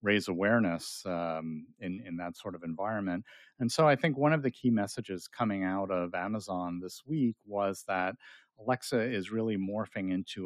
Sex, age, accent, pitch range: male, 50-69, American, 90-115 Hz